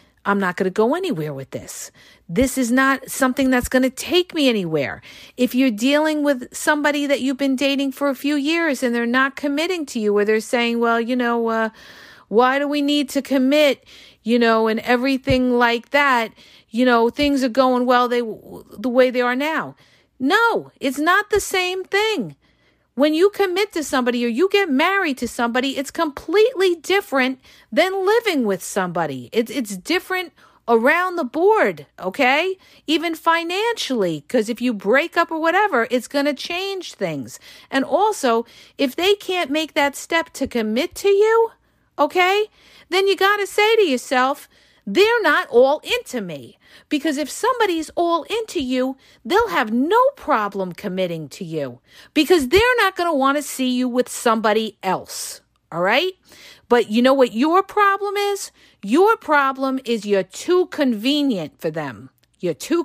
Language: English